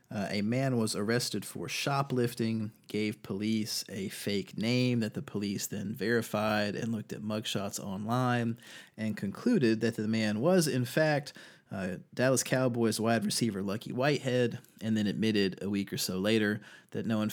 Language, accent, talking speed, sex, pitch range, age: English, American, 165 wpm, male, 105-120 Hz, 30-49